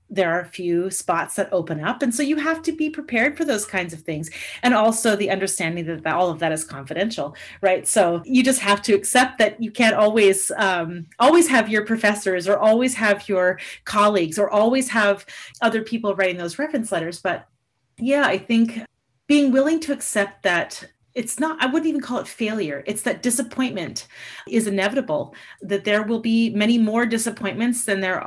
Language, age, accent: English, 30-49, American